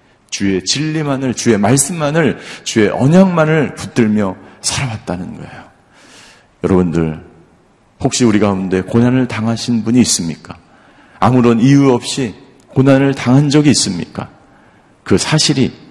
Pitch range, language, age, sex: 100-135 Hz, Korean, 50-69, male